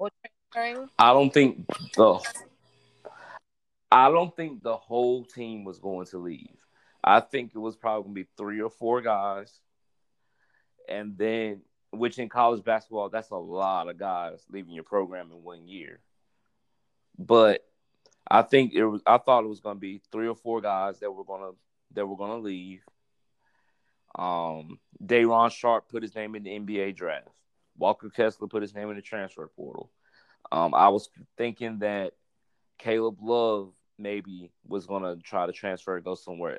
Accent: American